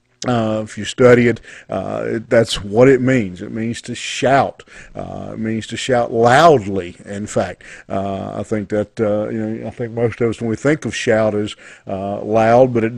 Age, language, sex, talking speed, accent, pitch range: 50-69, English, male, 210 wpm, American, 105-125 Hz